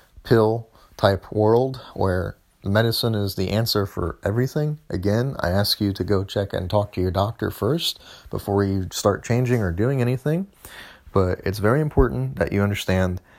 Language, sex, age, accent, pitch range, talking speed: English, male, 30-49, American, 95-110 Hz, 165 wpm